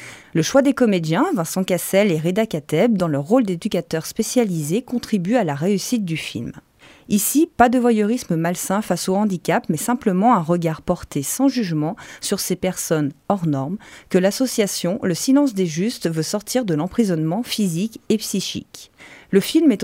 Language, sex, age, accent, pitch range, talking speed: French, female, 40-59, French, 170-235 Hz, 170 wpm